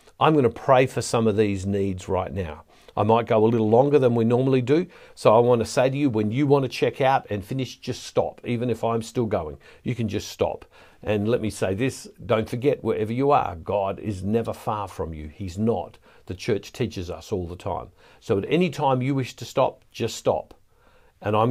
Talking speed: 235 wpm